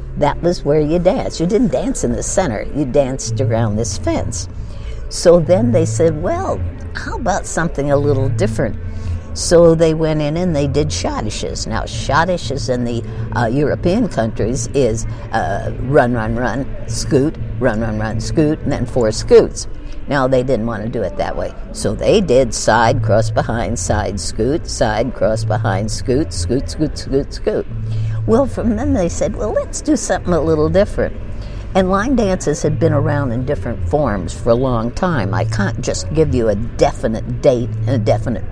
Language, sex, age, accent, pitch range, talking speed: English, female, 60-79, American, 110-145 Hz, 180 wpm